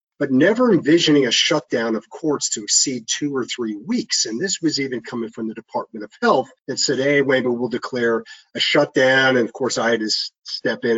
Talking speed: 215 wpm